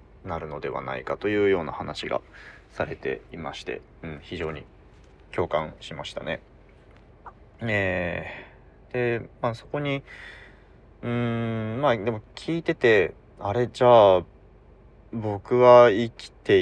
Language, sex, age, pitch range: Japanese, male, 20-39, 85-115 Hz